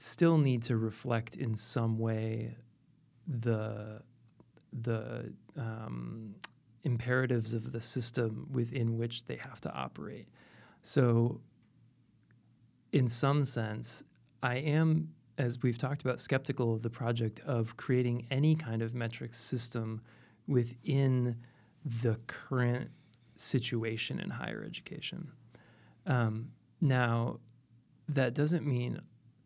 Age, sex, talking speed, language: 30-49, male, 110 wpm, English